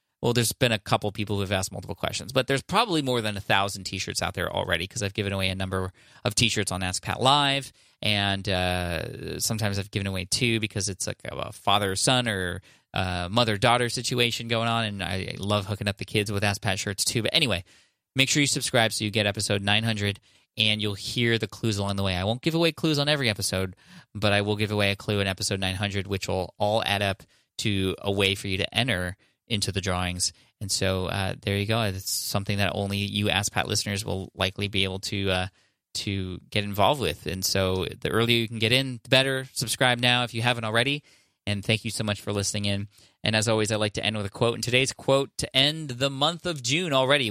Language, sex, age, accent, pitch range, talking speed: English, male, 20-39, American, 100-120 Hz, 230 wpm